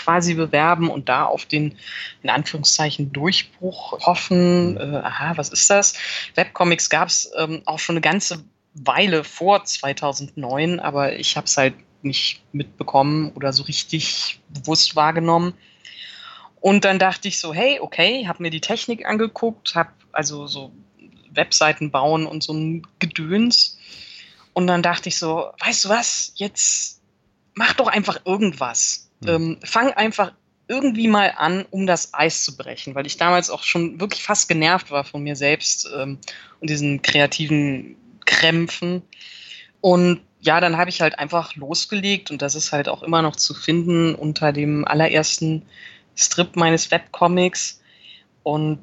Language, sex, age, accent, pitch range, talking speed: German, female, 20-39, German, 150-180 Hz, 150 wpm